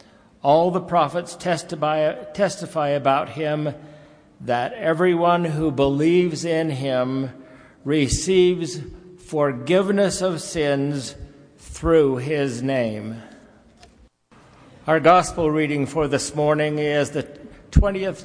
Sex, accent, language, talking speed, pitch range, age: male, American, English, 95 wpm, 135-165 Hz, 60-79